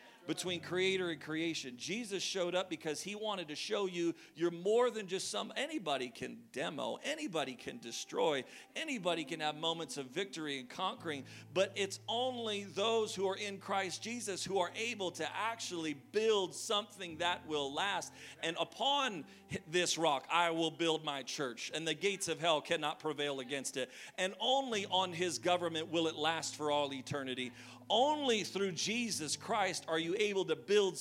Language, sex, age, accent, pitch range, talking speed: English, male, 40-59, American, 150-195 Hz, 170 wpm